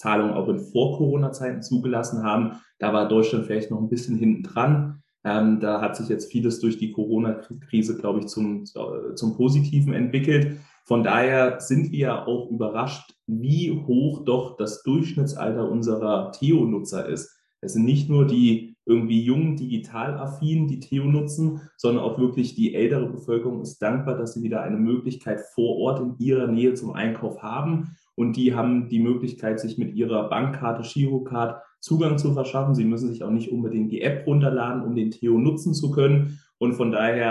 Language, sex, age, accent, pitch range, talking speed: English, male, 30-49, German, 110-135 Hz, 170 wpm